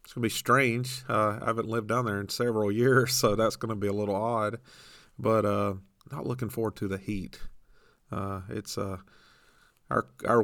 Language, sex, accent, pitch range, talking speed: English, male, American, 95-115 Hz, 200 wpm